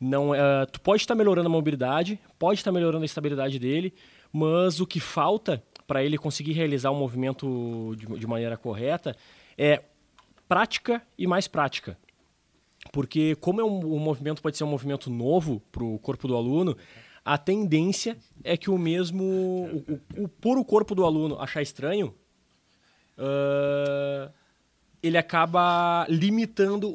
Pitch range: 135-180 Hz